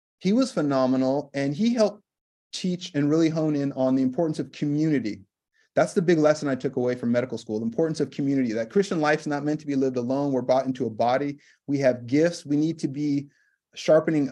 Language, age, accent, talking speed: English, 30-49, American, 220 wpm